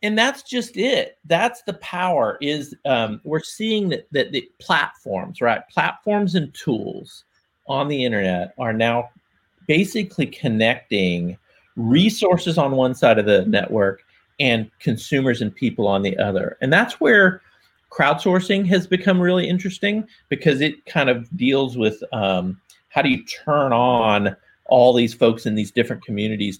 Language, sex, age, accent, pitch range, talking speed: English, male, 40-59, American, 110-165 Hz, 150 wpm